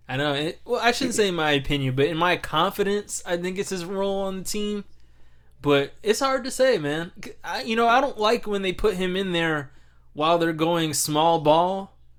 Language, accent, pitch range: English, American, 150-210 Hz